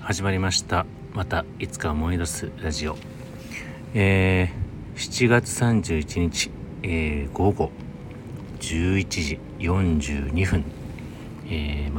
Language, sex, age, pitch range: Japanese, male, 40-59, 80-105 Hz